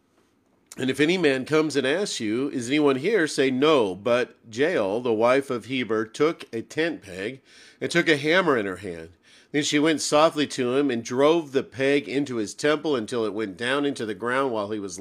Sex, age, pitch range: male, 50-69, 110-140 Hz